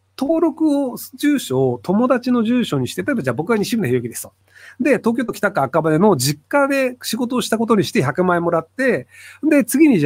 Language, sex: Japanese, male